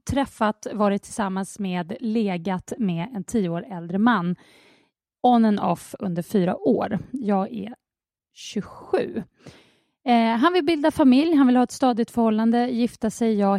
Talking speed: 145 wpm